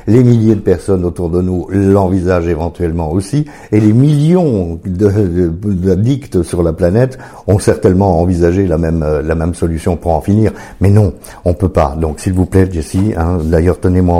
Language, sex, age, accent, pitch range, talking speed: French, male, 50-69, French, 85-110 Hz, 185 wpm